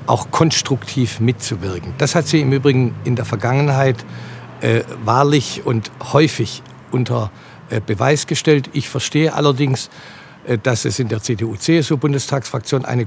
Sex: male